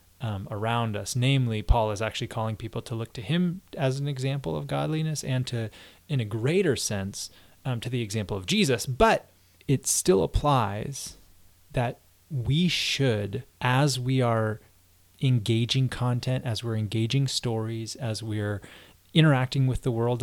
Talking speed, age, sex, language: 150 wpm, 20-39, male, English